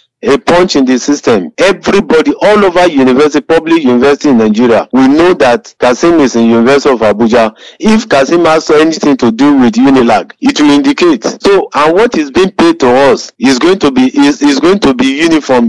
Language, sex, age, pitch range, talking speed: English, male, 50-69, 130-215 Hz, 200 wpm